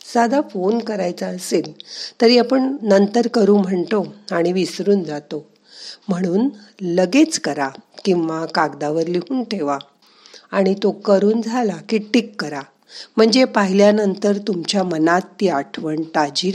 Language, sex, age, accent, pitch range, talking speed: Marathi, female, 50-69, native, 165-220 Hz, 110 wpm